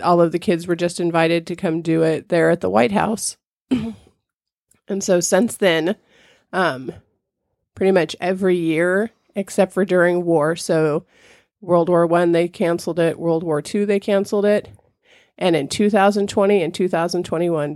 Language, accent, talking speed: English, American, 160 wpm